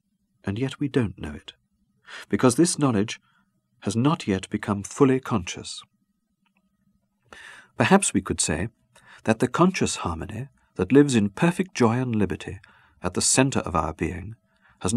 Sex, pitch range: male, 95-145 Hz